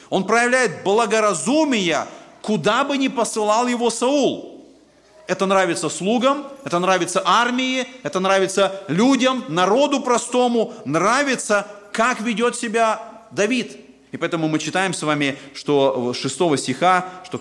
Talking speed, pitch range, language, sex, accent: 120 wpm, 155-220 Hz, Russian, male, native